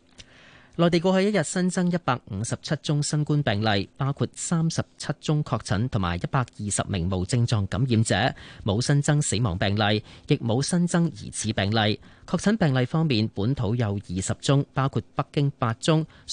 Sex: male